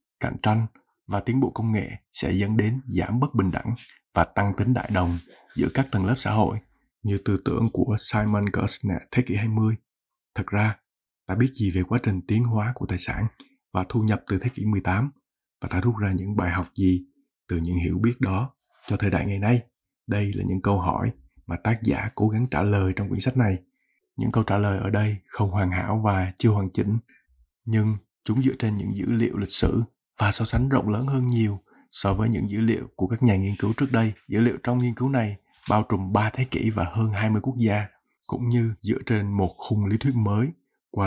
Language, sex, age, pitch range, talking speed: Vietnamese, male, 20-39, 100-120 Hz, 225 wpm